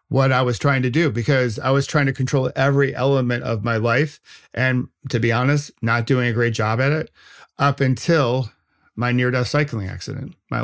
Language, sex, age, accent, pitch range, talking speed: English, male, 40-59, American, 115-140 Hz, 205 wpm